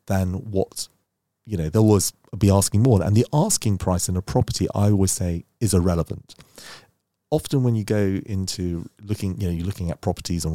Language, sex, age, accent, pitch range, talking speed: English, male, 40-59, British, 95-115 Hz, 195 wpm